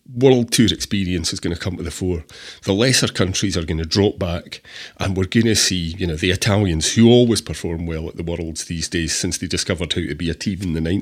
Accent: British